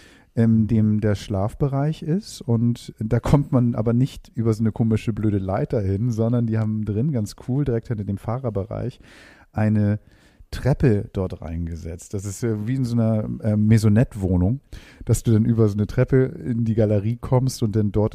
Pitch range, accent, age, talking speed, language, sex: 100-120 Hz, German, 40-59, 180 wpm, German, male